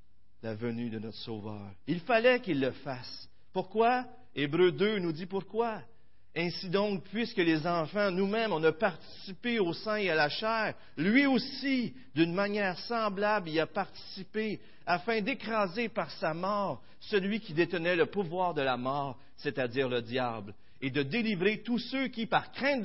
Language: French